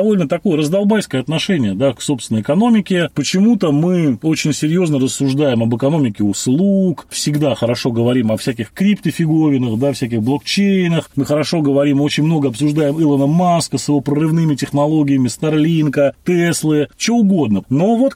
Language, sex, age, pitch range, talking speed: Russian, male, 30-49, 135-185 Hz, 140 wpm